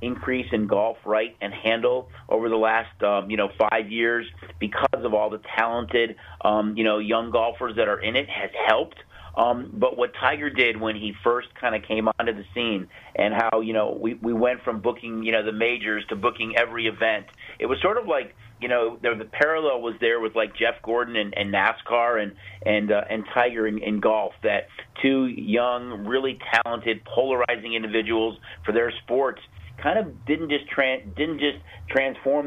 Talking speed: 190 wpm